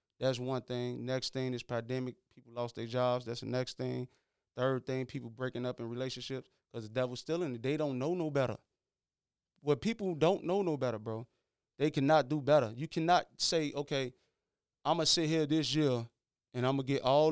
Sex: male